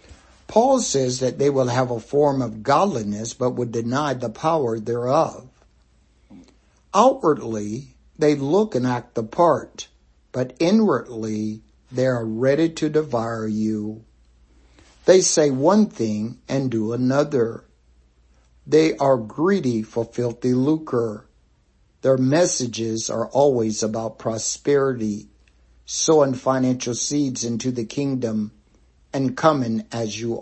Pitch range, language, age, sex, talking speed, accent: 110-135 Hz, English, 60-79, male, 120 wpm, American